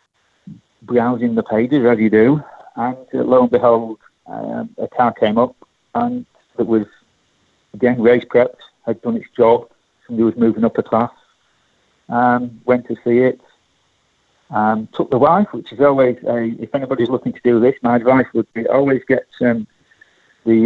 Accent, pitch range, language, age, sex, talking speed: British, 115-130 Hz, English, 40-59, male, 175 wpm